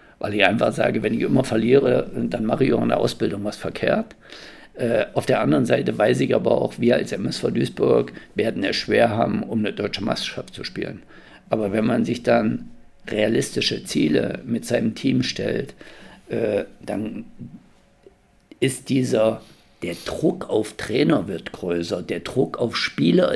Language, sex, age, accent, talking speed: German, male, 50-69, German, 165 wpm